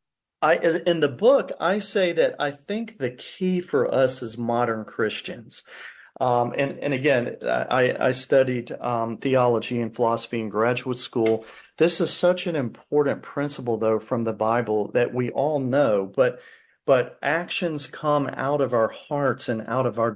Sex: male